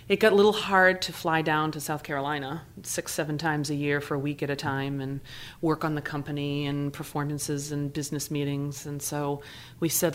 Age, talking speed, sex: 30-49, 215 wpm, female